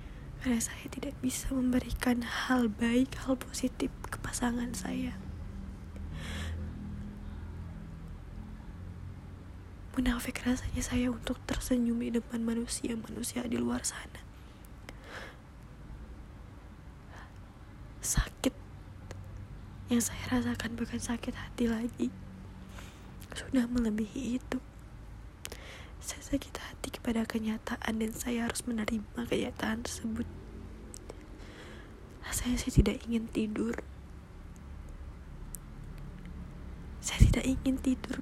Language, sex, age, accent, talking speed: Indonesian, female, 20-39, native, 85 wpm